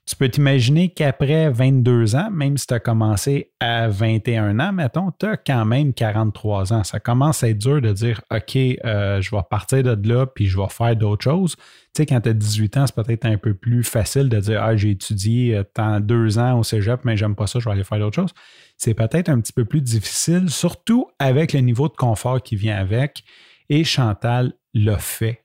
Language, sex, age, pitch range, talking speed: French, male, 30-49, 110-140 Hz, 220 wpm